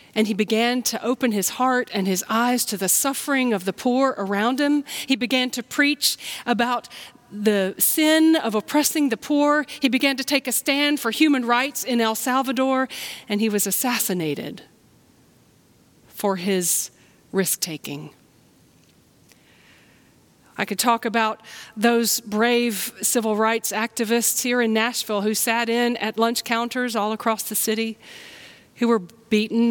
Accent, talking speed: American, 145 wpm